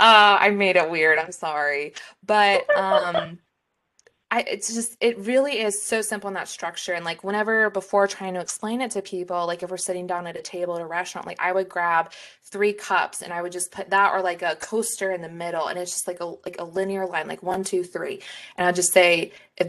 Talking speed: 235 wpm